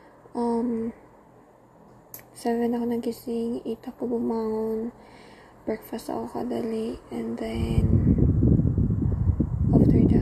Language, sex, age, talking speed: Filipino, female, 20-39, 80 wpm